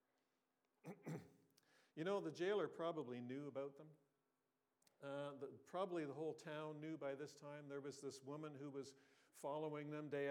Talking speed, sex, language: 155 wpm, male, English